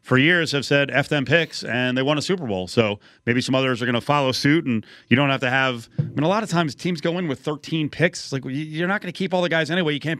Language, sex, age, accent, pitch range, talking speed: English, male, 30-49, American, 125-165 Hz, 305 wpm